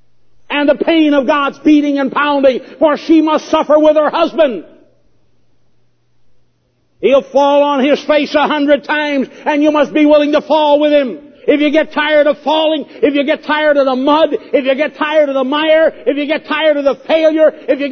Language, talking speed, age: English, 205 wpm, 60-79